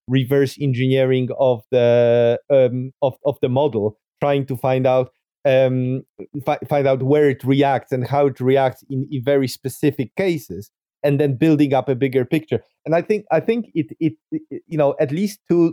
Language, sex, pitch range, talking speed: English, male, 125-145 Hz, 185 wpm